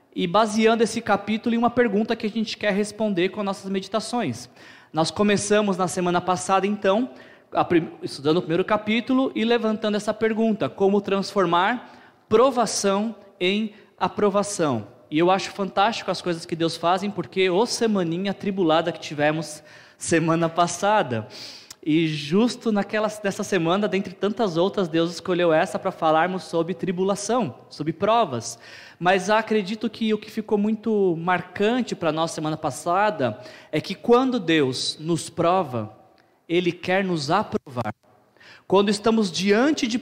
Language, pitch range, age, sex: Portuguese, 175-220 Hz, 20-39, male